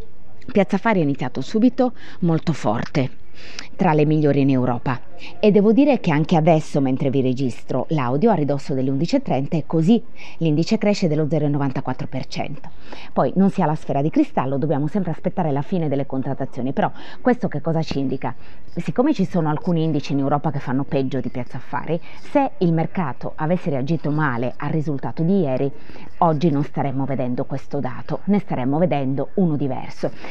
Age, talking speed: 30-49, 170 wpm